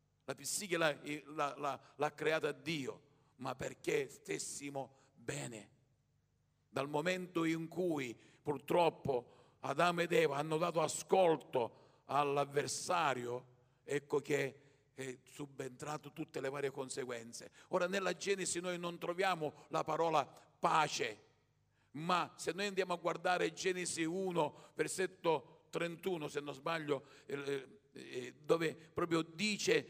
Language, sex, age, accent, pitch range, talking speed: Italian, male, 50-69, native, 135-170 Hz, 110 wpm